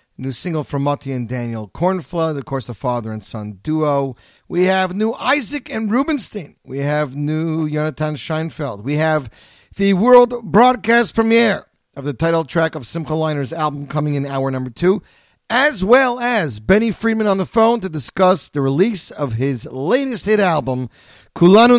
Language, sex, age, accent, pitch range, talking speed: English, male, 40-59, American, 130-185 Hz, 170 wpm